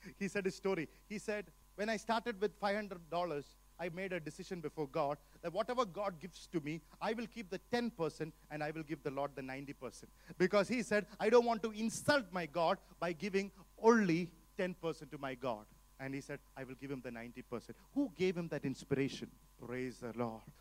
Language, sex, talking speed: English, male, 205 wpm